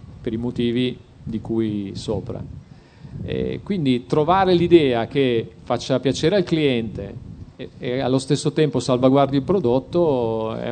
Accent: native